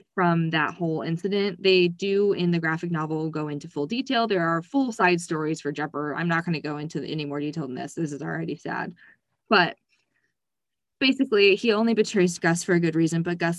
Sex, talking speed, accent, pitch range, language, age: female, 210 wpm, American, 155-190 Hz, English, 20-39